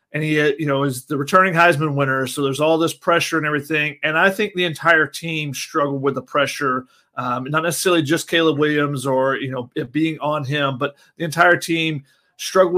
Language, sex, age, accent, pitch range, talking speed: English, male, 30-49, American, 140-175 Hz, 205 wpm